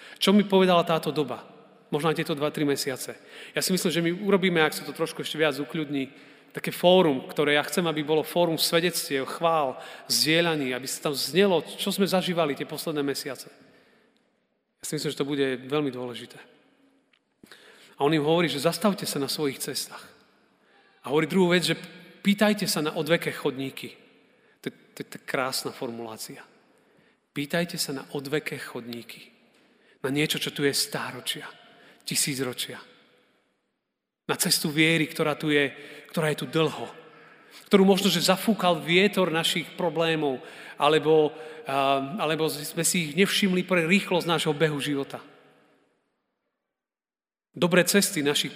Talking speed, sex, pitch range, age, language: 145 wpm, male, 145-180 Hz, 40-59, Slovak